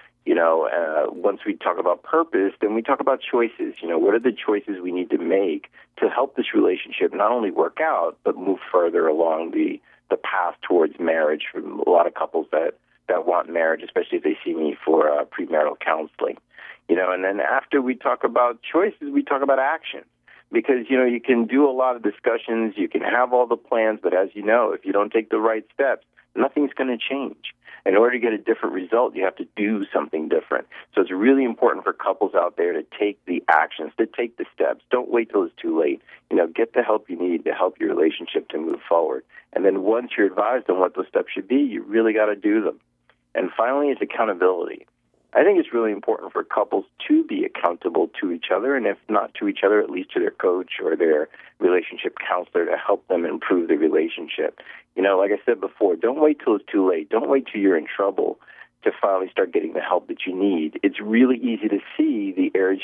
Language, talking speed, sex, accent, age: English, 230 wpm, male, American, 50-69